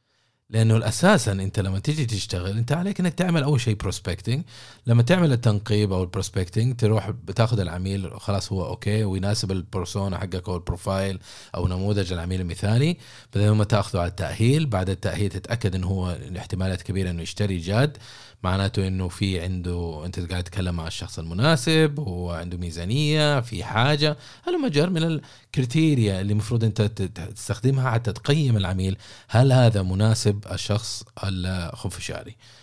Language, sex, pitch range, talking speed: Arabic, male, 100-130 Hz, 145 wpm